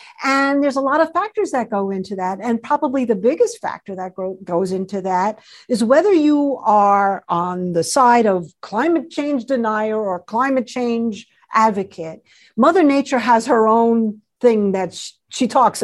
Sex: female